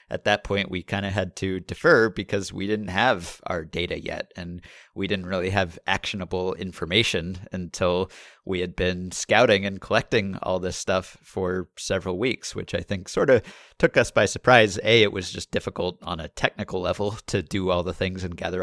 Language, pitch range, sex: English, 90-110 Hz, male